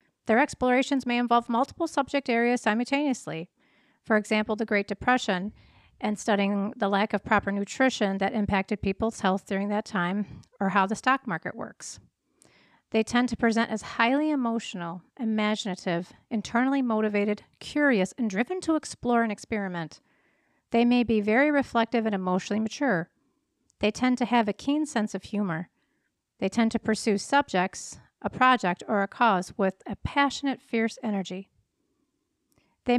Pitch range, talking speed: 205-265 Hz, 150 wpm